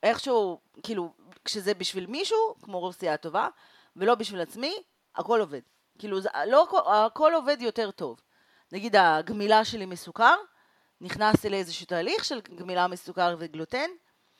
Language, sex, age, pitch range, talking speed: Hebrew, female, 30-49, 175-275 Hz, 130 wpm